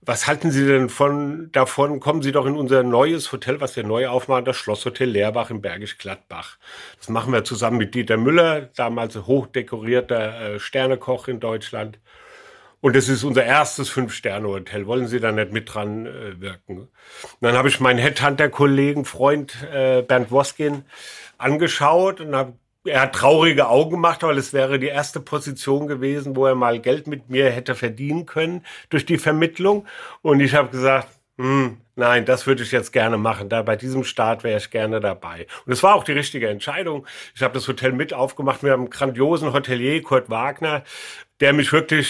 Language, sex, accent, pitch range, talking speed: German, male, German, 125-145 Hz, 185 wpm